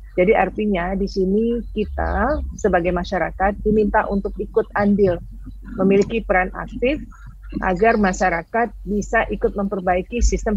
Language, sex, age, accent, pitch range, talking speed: Indonesian, female, 40-59, native, 185-220 Hz, 115 wpm